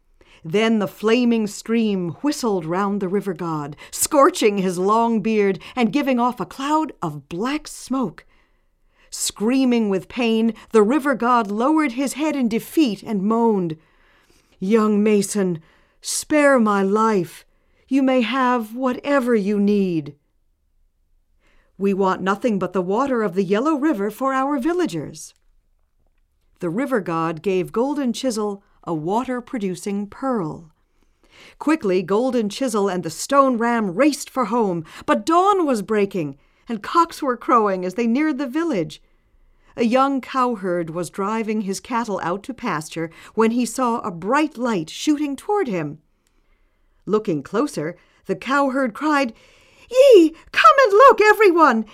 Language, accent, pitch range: English, American, 180-270 Hz